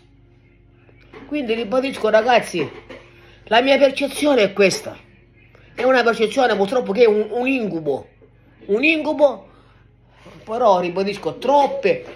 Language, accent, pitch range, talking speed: Italian, native, 190-260 Hz, 110 wpm